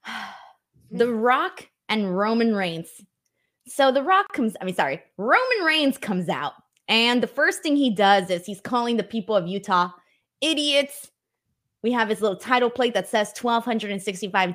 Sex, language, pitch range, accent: female, English, 195-255 Hz, American